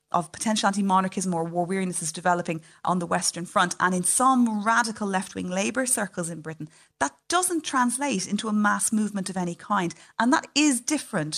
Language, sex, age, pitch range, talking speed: English, female, 30-49, 175-220 Hz, 185 wpm